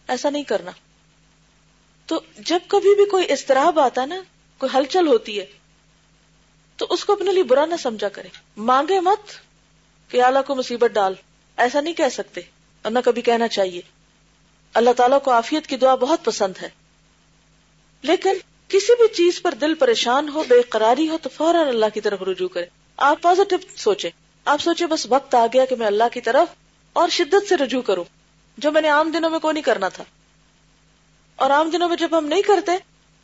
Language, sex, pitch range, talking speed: Urdu, female, 225-325 Hz, 175 wpm